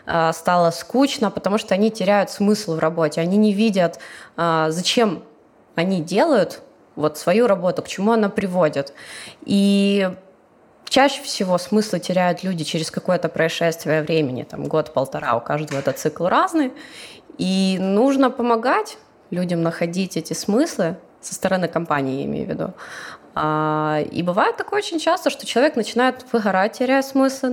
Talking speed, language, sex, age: 140 wpm, Russian, female, 20-39